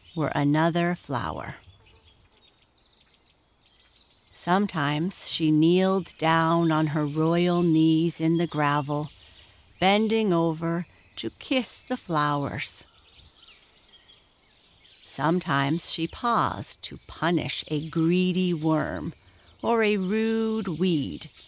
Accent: American